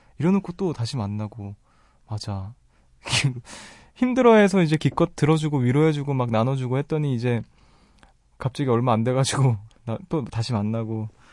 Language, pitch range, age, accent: Korean, 115-155 Hz, 20-39, native